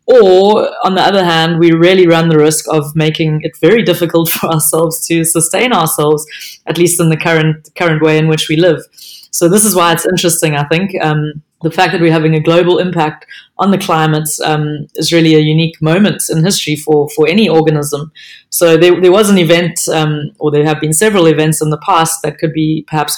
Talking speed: 215 wpm